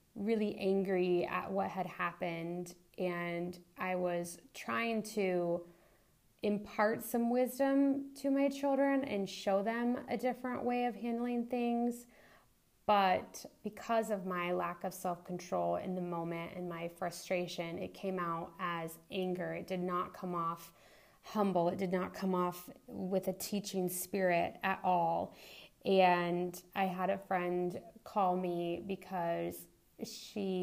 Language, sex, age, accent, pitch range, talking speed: English, female, 20-39, American, 175-205 Hz, 135 wpm